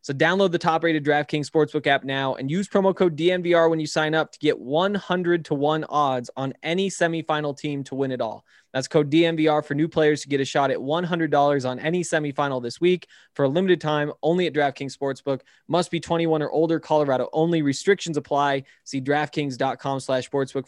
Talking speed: 205 wpm